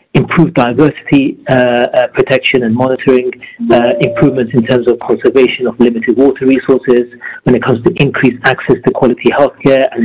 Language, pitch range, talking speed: English, 120-150 Hz, 160 wpm